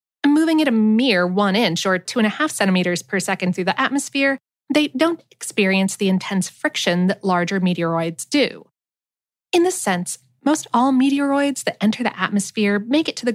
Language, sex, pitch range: English, female, 190-275 Hz